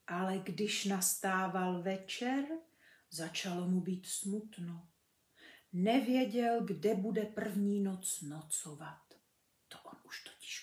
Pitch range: 190-255 Hz